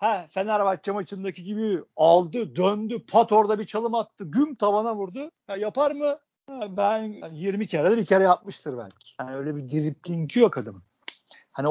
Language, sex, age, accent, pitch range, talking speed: Turkish, male, 50-69, native, 150-205 Hz, 175 wpm